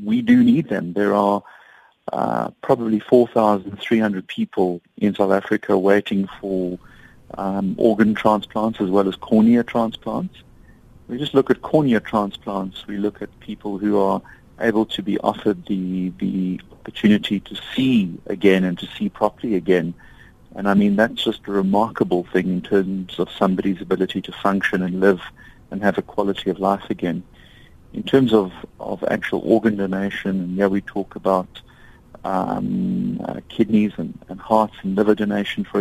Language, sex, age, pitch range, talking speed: English, male, 40-59, 95-105 Hz, 160 wpm